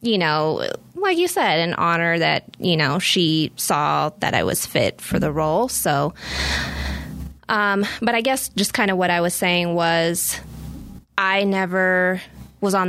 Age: 20-39